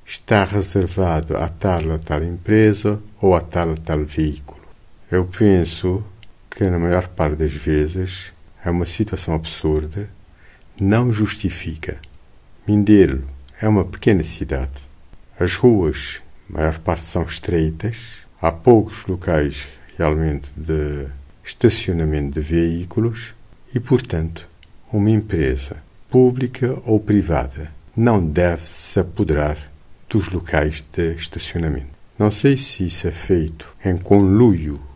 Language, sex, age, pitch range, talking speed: Portuguese, male, 50-69, 80-100 Hz, 120 wpm